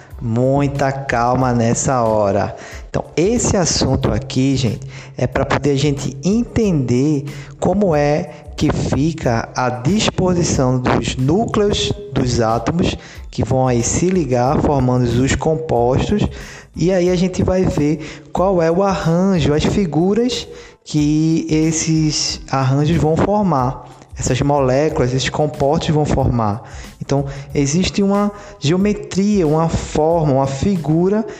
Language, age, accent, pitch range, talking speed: Portuguese, 20-39, Brazilian, 130-160 Hz, 120 wpm